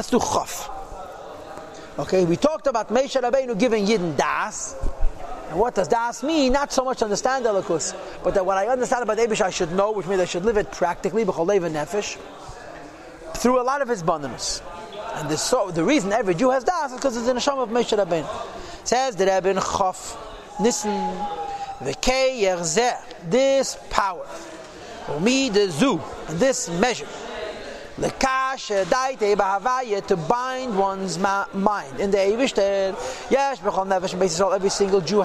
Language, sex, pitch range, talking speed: English, male, 190-245 Hz, 150 wpm